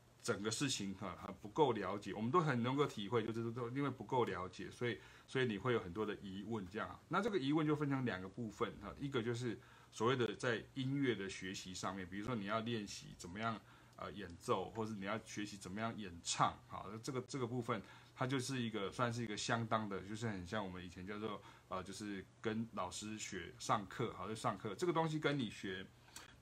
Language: Chinese